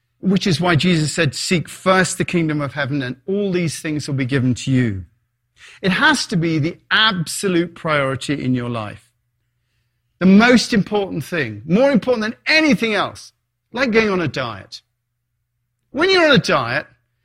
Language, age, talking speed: English, 40-59, 170 wpm